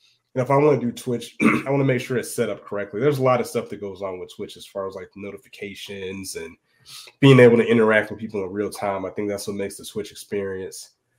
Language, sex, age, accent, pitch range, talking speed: English, male, 20-39, American, 100-125 Hz, 265 wpm